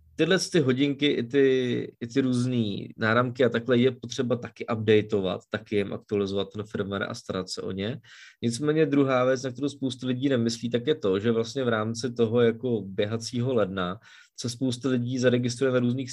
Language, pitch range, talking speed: Czech, 115-135 Hz, 185 wpm